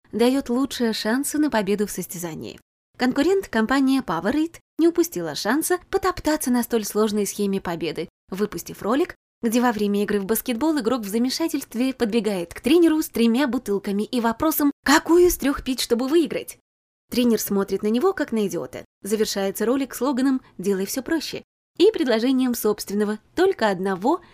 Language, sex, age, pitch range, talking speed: Russian, female, 20-39, 210-270 Hz, 155 wpm